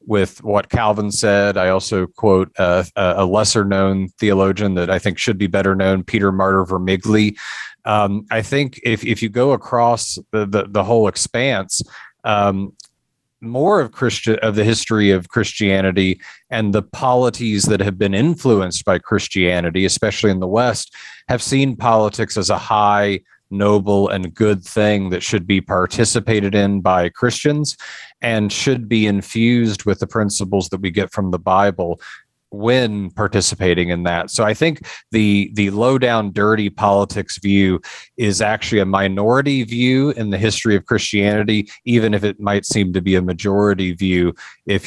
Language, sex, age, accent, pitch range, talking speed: English, male, 40-59, American, 95-110 Hz, 160 wpm